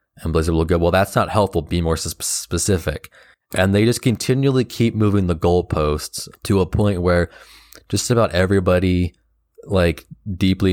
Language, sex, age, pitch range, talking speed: English, male, 20-39, 80-95 Hz, 155 wpm